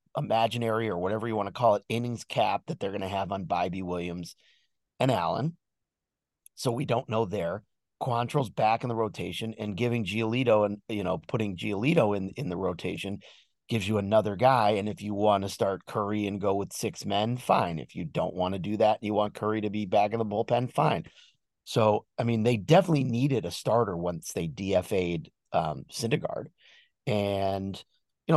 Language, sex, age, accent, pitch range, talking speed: English, male, 30-49, American, 105-140 Hz, 195 wpm